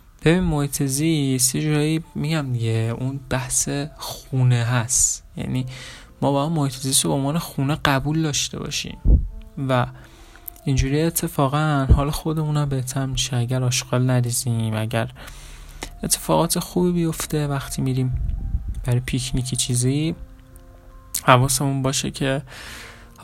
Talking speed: 115 wpm